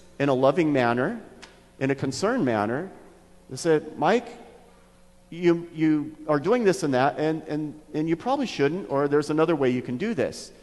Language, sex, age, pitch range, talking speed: English, male, 40-59, 120-160 Hz, 180 wpm